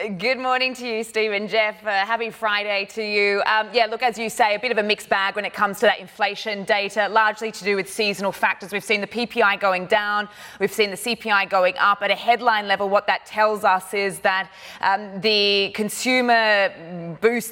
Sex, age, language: female, 20-39, English